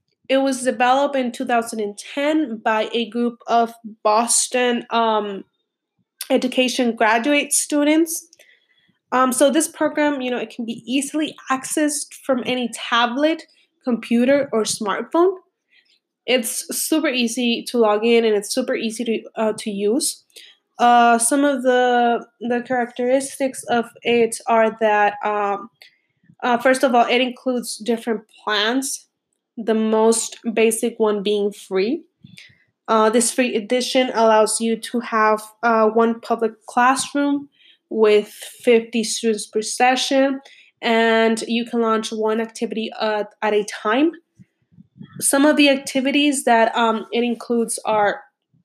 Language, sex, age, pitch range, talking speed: English, female, 20-39, 220-260 Hz, 130 wpm